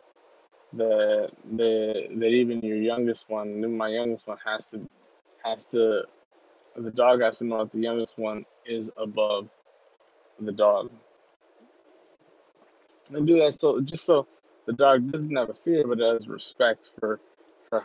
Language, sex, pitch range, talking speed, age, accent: English, male, 110-135 Hz, 150 wpm, 20-39, American